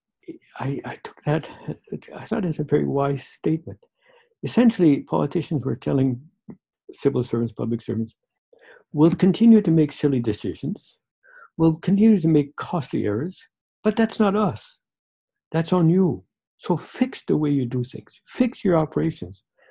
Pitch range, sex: 125-200 Hz, male